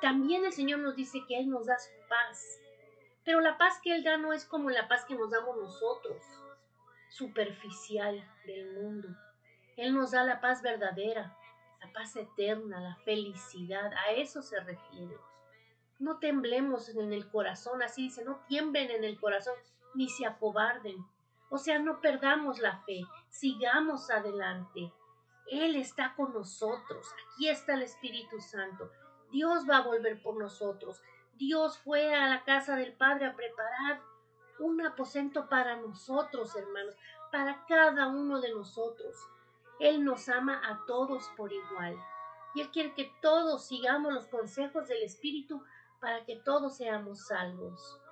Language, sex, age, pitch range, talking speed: Spanish, female, 40-59, 205-280 Hz, 155 wpm